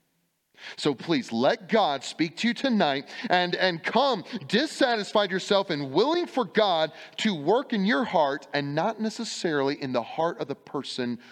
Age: 30-49